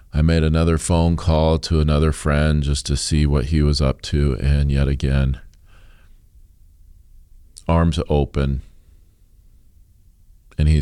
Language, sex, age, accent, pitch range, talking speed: English, male, 40-59, American, 70-85 Hz, 130 wpm